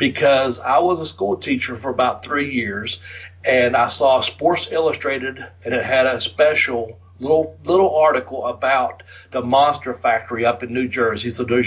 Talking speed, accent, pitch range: 170 wpm, American, 115-140 Hz